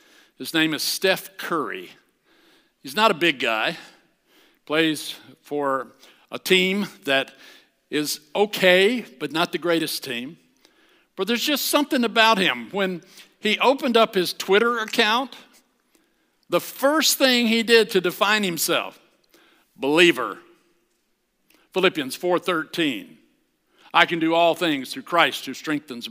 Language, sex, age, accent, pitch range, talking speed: English, male, 60-79, American, 155-210 Hz, 125 wpm